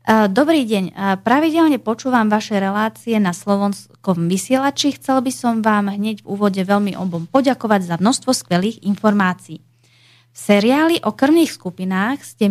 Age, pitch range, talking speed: 20-39, 180-230 Hz, 140 wpm